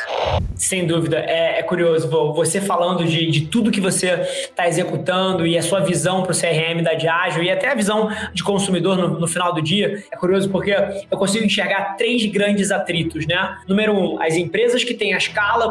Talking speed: 200 wpm